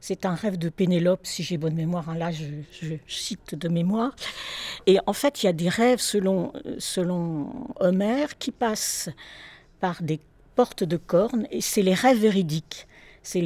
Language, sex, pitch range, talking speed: French, female, 175-230 Hz, 180 wpm